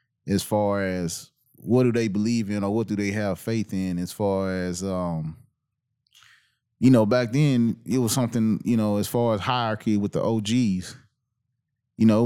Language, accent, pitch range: English, American, 105-130 Hz